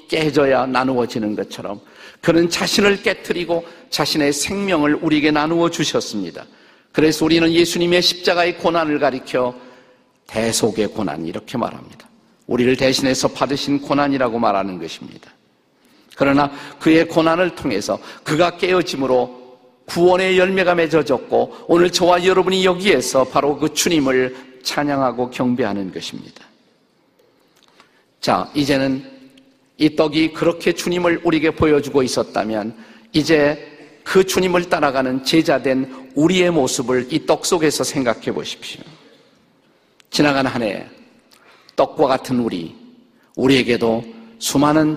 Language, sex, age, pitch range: Korean, male, 50-69, 135-175 Hz